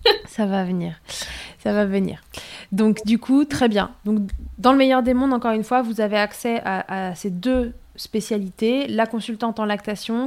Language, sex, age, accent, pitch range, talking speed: French, female, 20-39, French, 190-230 Hz, 185 wpm